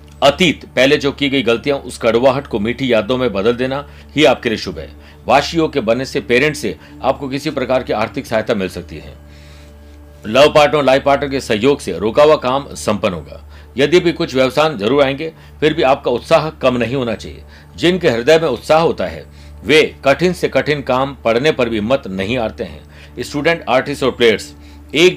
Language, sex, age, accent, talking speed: Hindi, male, 60-79, native, 190 wpm